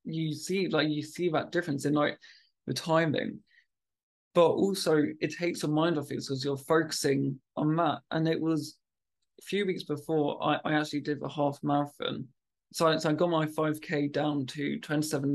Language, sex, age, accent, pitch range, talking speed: English, male, 20-39, British, 145-160 Hz, 190 wpm